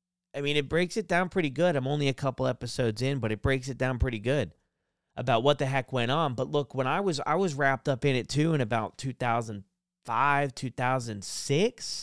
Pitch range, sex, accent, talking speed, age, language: 120-165 Hz, male, American, 235 wpm, 30-49, English